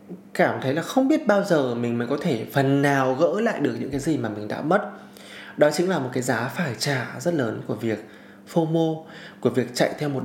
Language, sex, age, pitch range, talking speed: Vietnamese, male, 20-39, 120-165 Hz, 240 wpm